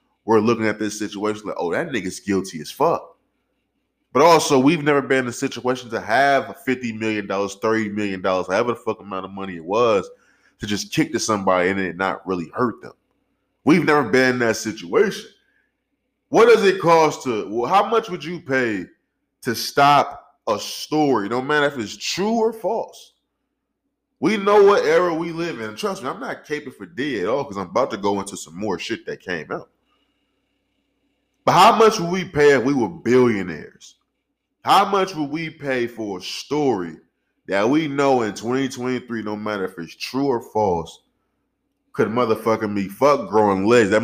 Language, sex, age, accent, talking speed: English, male, 20-39, American, 185 wpm